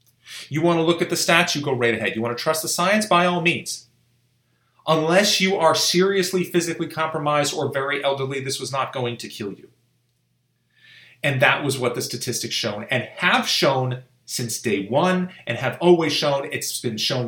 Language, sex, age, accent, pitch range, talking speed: English, male, 30-49, American, 120-160 Hz, 195 wpm